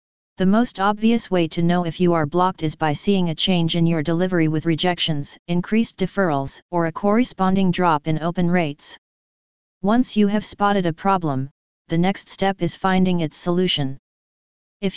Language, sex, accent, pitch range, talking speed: English, female, American, 165-195 Hz, 170 wpm